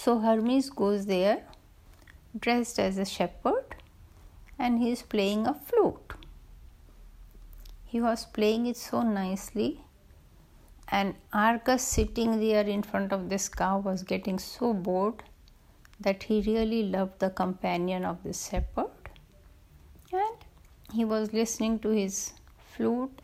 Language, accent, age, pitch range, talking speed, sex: Hindi, native, 60-79, 195-245 Hz, 125 wpm, female